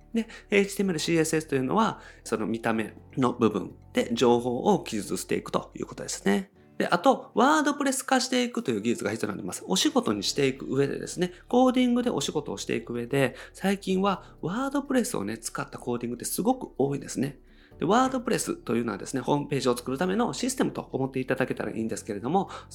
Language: Japanese